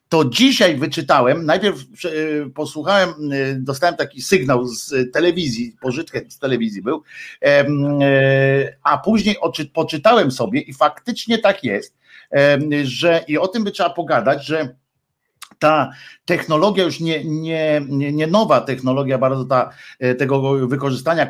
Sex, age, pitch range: male, 50-69, 135-175 Hz